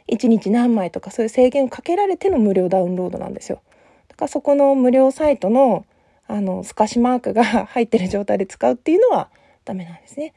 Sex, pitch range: female, 210-290 Hz